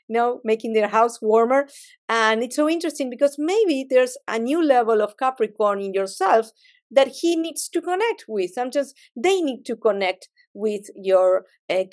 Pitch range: 220-280 Hz